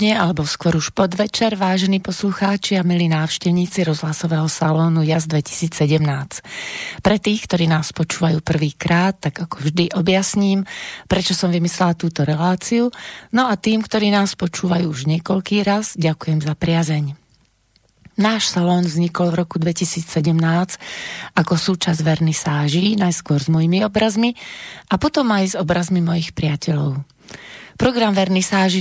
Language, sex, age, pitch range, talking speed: Slovak, female, 30-49, 160-195 Hz, 130 wpm